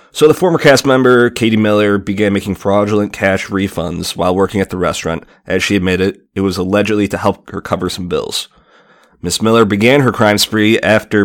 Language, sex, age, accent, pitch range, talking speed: English, male, 30-49, American, 95-110 Hz, 190 wpm